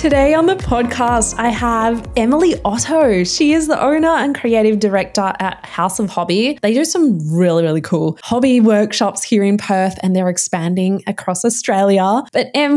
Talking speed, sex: 175 wpm, female